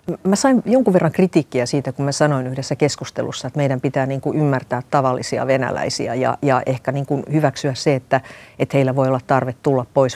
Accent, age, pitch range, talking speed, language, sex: native, 50-69, 130-150 Hz, 165 wpm, Finnish, female